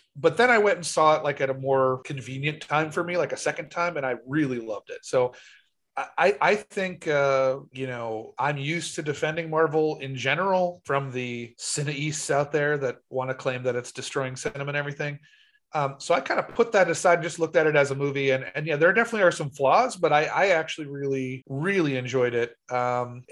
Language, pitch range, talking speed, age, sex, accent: English, 130-165 Hz, 225 wpm, 30-49, male, American